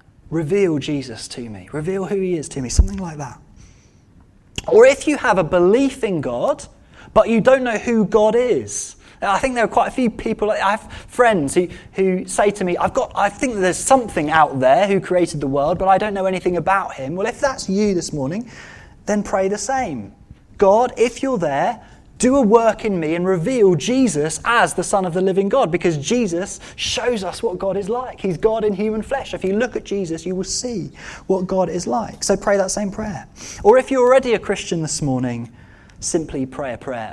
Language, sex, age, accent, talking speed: English, male, 20-39, British, 215 wpm